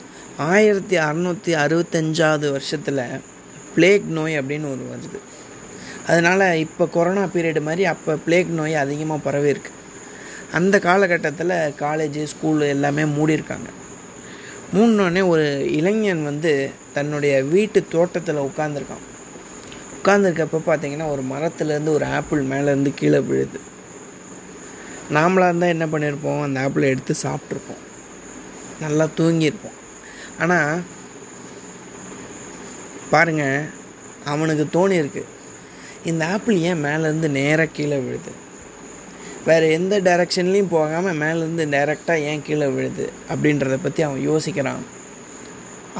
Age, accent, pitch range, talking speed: 20-39, native, 145-170 Hz, 105 wpm